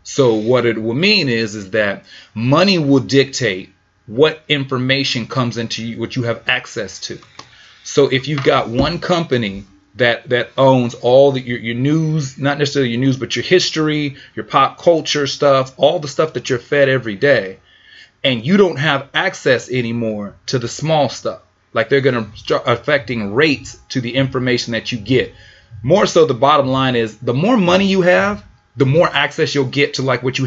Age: 30-49